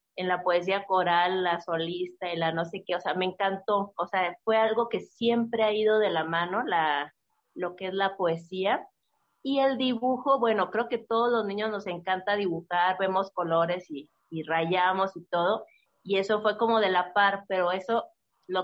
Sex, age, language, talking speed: female, 30-49, Spanish, 195 wpm